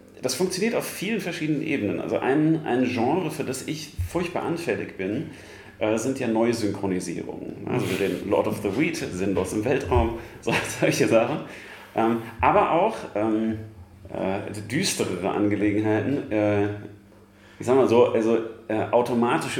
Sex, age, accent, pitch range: male, 40-59, German, 100-125 Hz